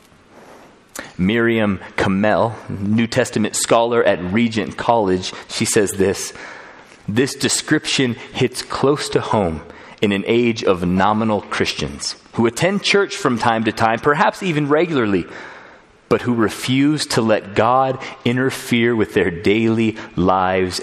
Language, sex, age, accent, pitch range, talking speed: English, male, 30-49, American, 100-135 Hz, 125 wpm